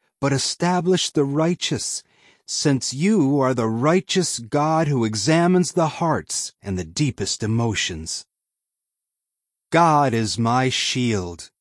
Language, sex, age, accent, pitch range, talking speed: English, male, 40-59, American, 110-170 Hz, 115 wpm